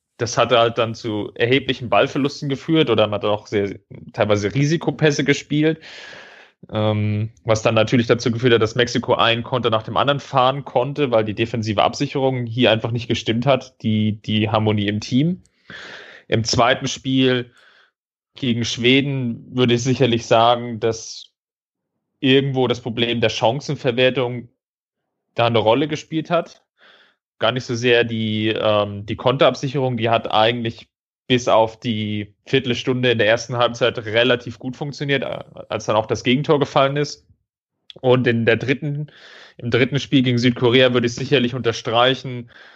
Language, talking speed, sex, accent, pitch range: German, 150 wpm, male, German, 115-135 Hz